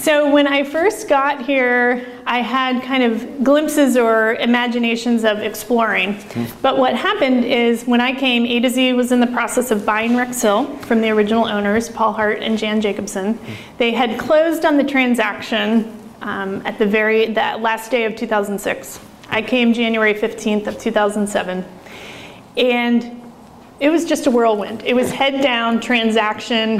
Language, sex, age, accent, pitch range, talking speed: English, female, 30-49, American, 220-250 Hz, 165 wpm